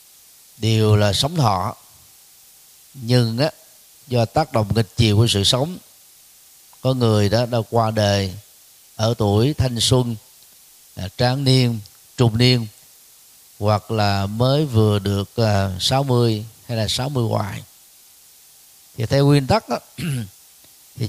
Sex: male